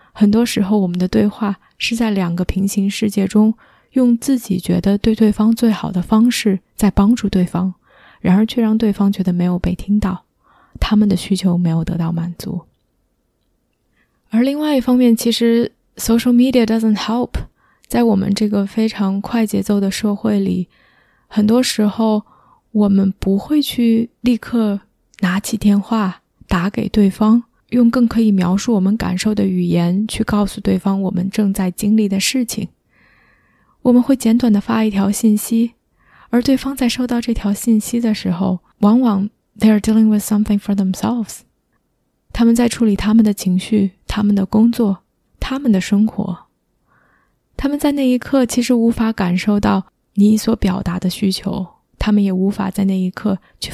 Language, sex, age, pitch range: Chinese, female, 20-39, 195-230 Hz